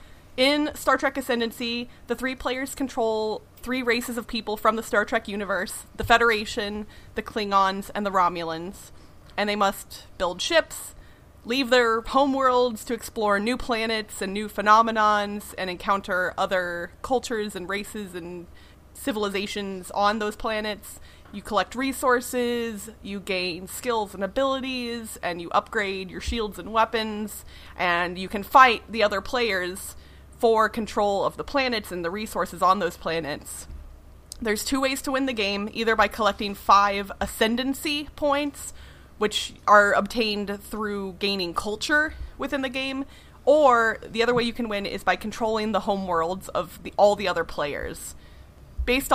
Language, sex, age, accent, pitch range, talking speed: English, female, 30-49, American, 195-240 Hz, 150 wpm